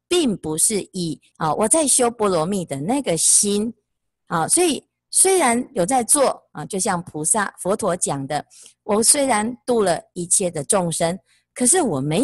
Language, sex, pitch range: Chinese, female, 160-235 Hz